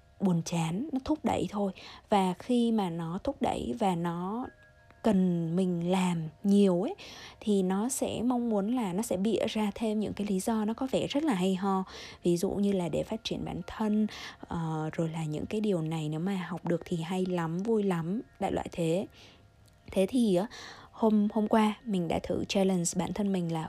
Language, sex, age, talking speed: Vietnamese, female, 20-39, 210 wpm